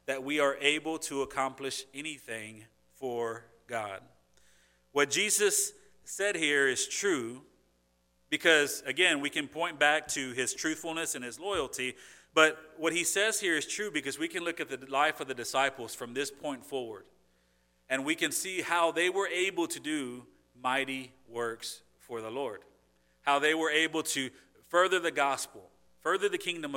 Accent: American